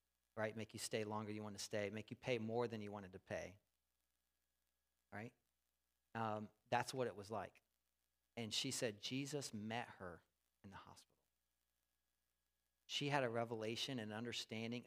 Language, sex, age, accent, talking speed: English, male, 40-59, American, 165 wpm